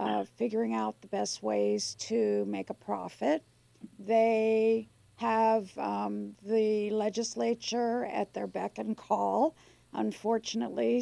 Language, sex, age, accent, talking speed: English, female, 50-69, American, 115 wpm